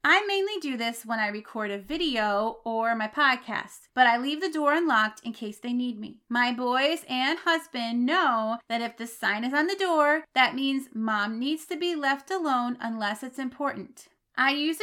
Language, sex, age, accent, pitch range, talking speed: English, female, 30-49, American, 225-295 Hz, 200 wpm